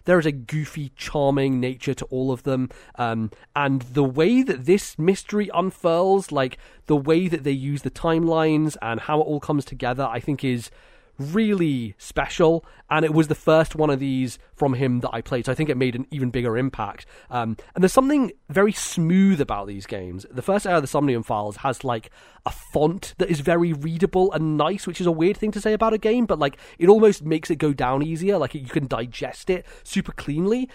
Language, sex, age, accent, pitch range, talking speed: English, male, 30-49, British, 130-170 Hz, 215 wpm